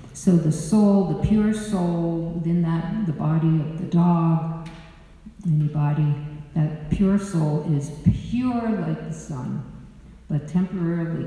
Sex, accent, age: female, American, 60-79